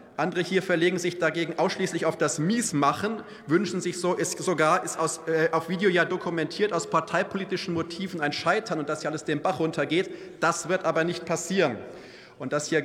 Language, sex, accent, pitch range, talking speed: German, male, German, 155-190 Hz, 190 wpm